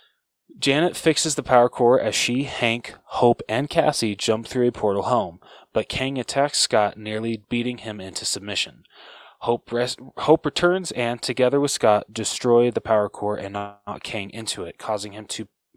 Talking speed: 170 wpm